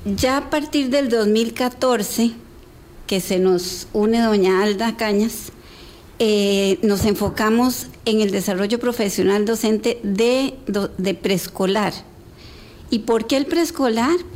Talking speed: 115 wpm